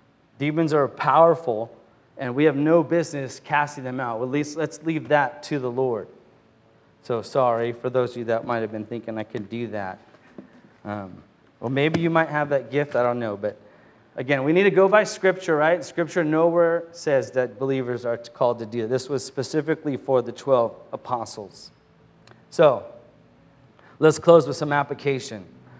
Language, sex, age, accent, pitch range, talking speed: English, male, 30-49, American, 130-165 Hz, 175 wpm